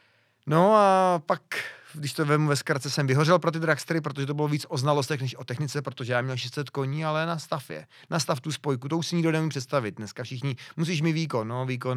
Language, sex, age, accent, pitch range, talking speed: Czech, male, 30-49, native, 130-170 Hz, 230 wpm